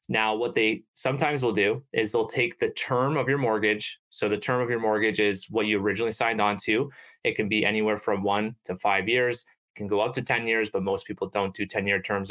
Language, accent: English, American